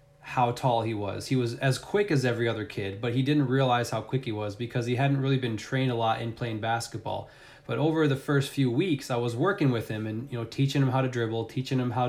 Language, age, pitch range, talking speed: English, 20-39, 115-140 Hz, 265 wpm